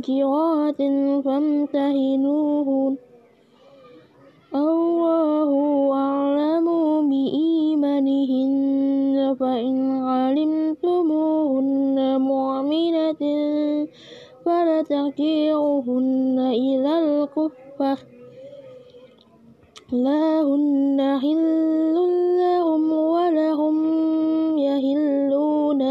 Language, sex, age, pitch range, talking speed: Indonesian, female, 20-39, 265-310 Hz, 35 wpm